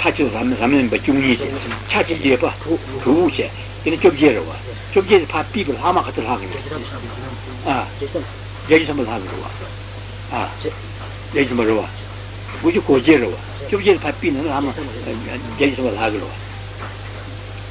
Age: 60-79